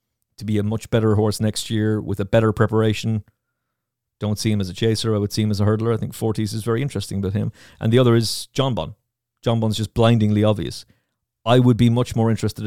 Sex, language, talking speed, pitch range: male, English, 235 wpm, 105-125 Hz